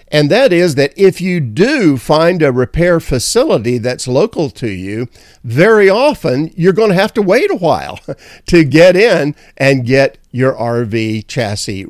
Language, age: English, 50-69